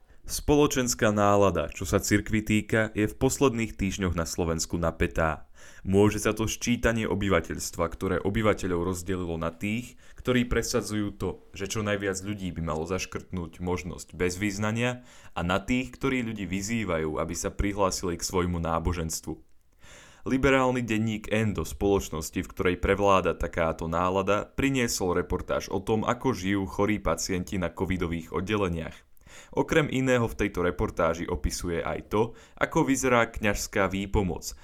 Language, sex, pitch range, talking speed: Slovak, male, 85-110 Hz, 140 wpm